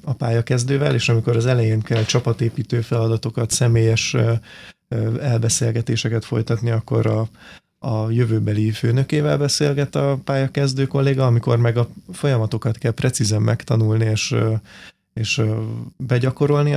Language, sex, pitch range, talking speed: Hungarian, male, 110-130 Hz, 110 wpm